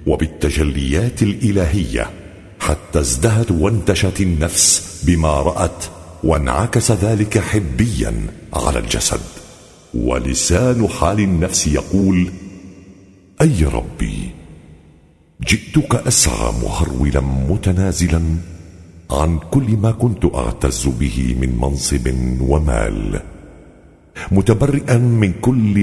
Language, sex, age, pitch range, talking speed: Arabic, male, 50-69, 75-105 Hz, 80 wpm